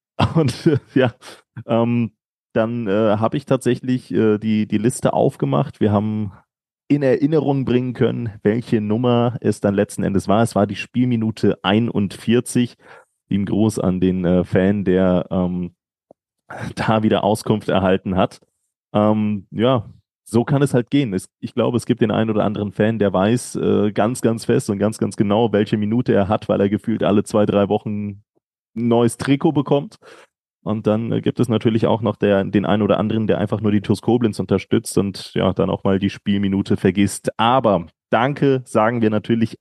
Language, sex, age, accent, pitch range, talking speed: German, male, 30-49, German, 100-120 Hz, 175 wpm